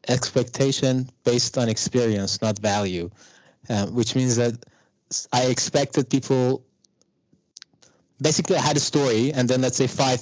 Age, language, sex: 20-39, English, male